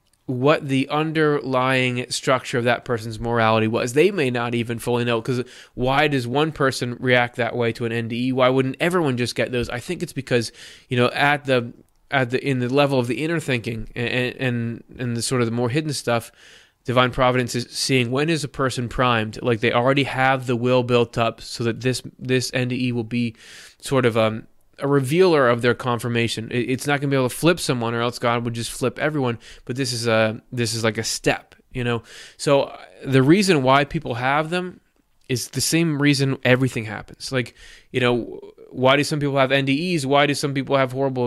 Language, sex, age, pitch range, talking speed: English, male, 20-39, 120-135 Hz, 210 wpm